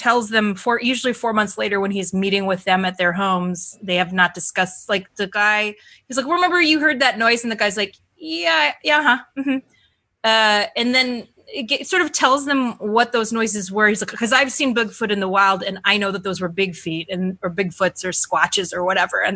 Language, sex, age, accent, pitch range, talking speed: English, female, 20-39, American, 195-260 Hz, 235 wpm